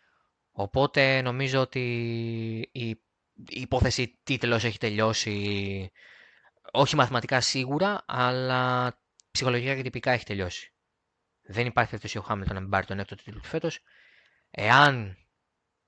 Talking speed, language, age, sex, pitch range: 115 wpm, Greek, 20-39, male, 100-125 Hz